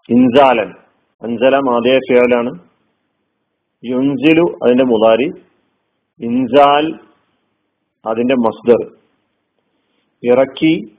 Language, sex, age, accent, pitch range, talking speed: Malayalam, male, 40-59, native, 120-150 Hz, 60 wpm